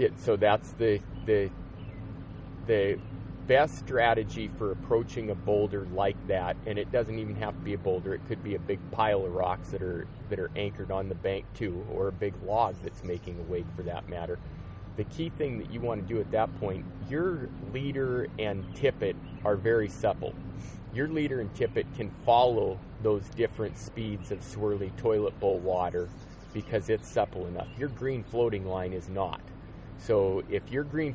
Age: 30-49